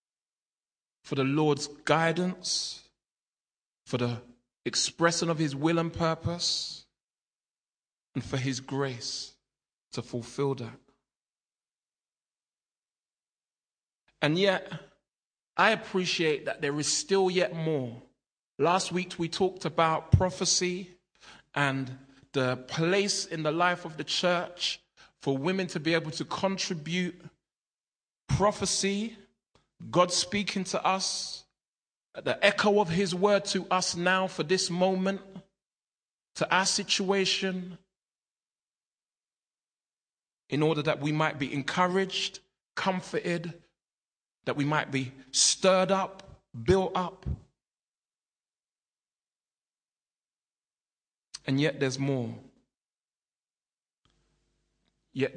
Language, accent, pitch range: English, British, 140-190 Hz